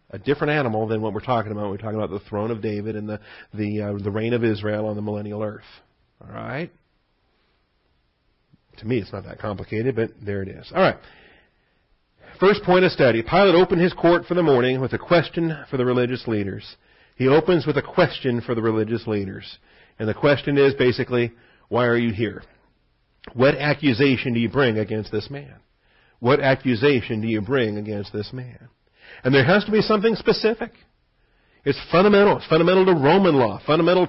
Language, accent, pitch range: English, American, 110-145 Hz